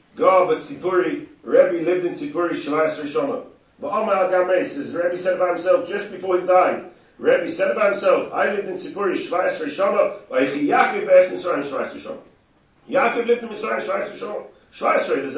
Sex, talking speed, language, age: male, 190 wpm, English, 40-59